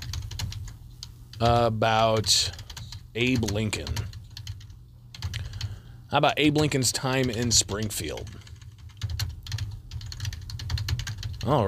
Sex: male